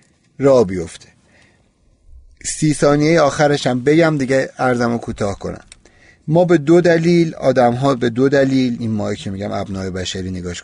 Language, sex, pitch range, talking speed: Persian, male, 110-155 Hz, 145 wpm